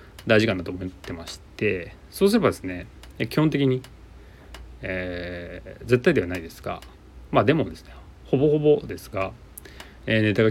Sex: male